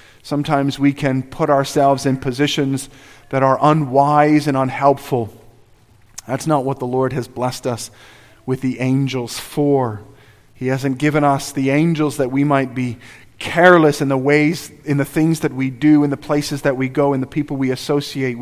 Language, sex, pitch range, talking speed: English, male, 125-150 Hz, 180 wpm